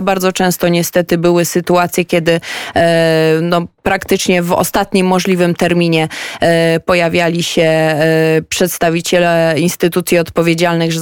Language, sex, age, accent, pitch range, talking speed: Polish, female, 20-39, native, 175-225 Hz, 85 wpm